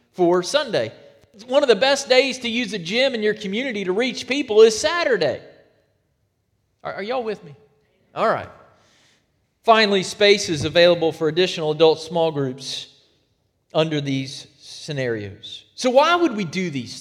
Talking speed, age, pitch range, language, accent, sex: 155 wpm, 40-59, 160-225 Hz, English, American, male